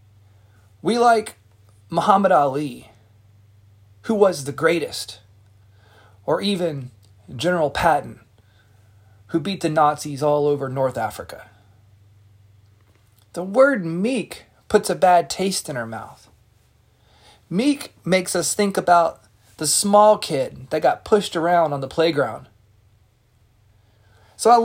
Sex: male